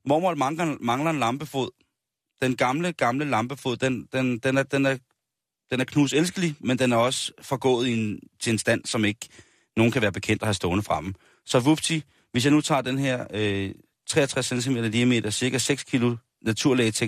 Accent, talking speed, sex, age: native, 185 wpm, male, 30-49